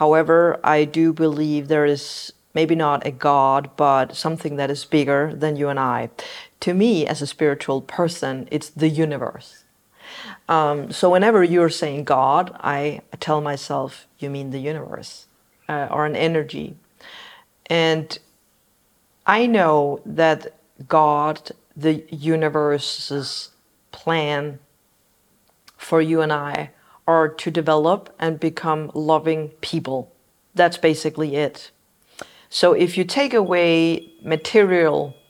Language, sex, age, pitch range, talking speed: Danish, female, 40-59, 145-170 Hz, 120 wpm